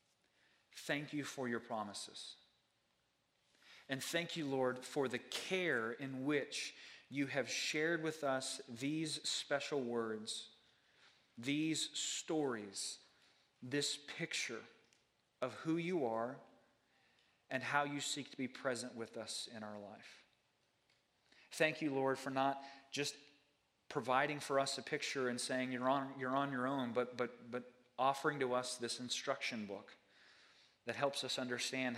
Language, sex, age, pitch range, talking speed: English, male, 40-59, 115-135 Hz, 135 wpm